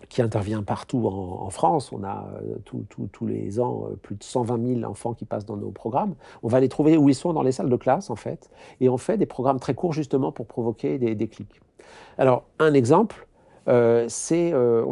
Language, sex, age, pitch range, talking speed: French, male, 50-69, 115-150 Hz, 235 wpm